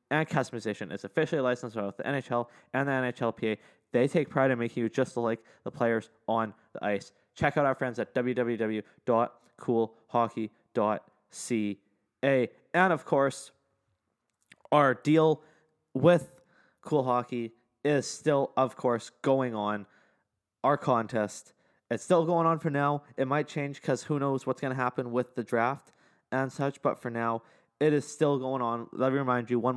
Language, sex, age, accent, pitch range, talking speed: English, male, 20-39, American, 115-140 Hz, 165 wpm